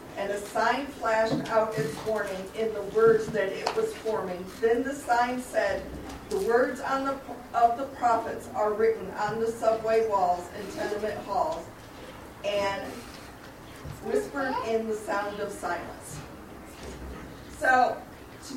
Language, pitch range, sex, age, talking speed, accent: English, 215-275 Hz, female, 40-59, 140 wpm, American